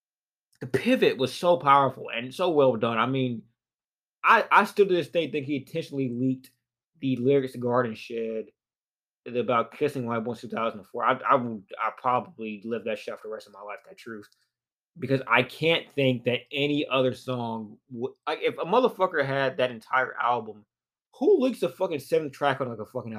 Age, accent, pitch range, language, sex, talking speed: 20-39, American, 120-150 Hz, English, male, 195 wpm